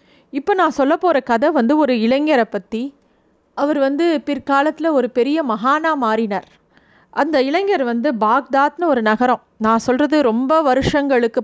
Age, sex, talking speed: 30-49, female, 135 wpm